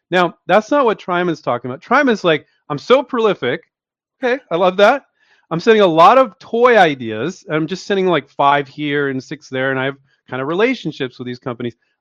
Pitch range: 140-200 Hz